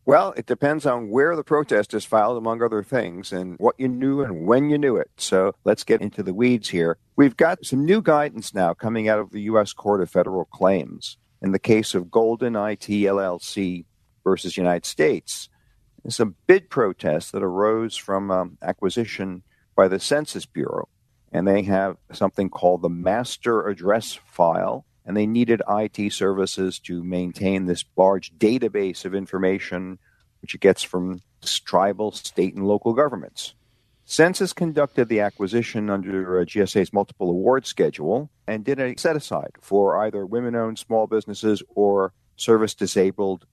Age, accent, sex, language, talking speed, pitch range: 50-69, American, male, English, 160 wpm, 95-120 Hz